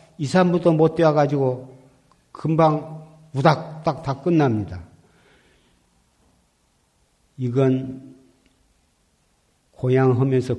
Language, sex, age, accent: Korean, male, 50-69, native